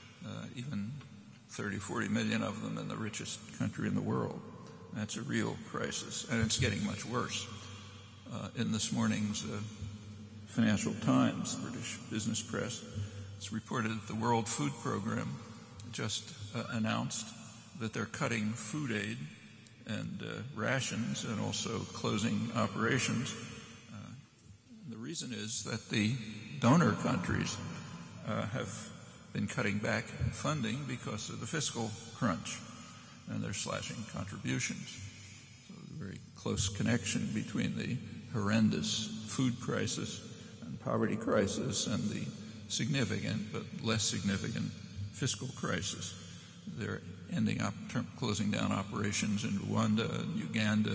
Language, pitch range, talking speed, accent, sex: English, 105-115 Hz, 130 wpm, American, male